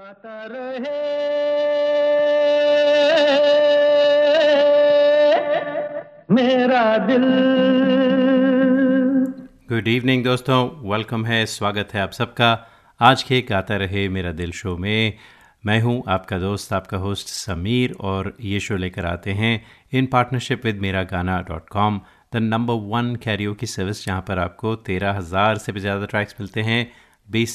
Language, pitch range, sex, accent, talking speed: Hindi, 100-130 Hz, male, native, 125 wpm